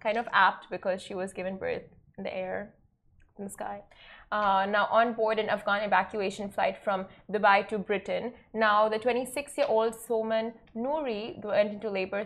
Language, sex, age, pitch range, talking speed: Arabic, female, 20-39, 200-240 Hz, 165 wpm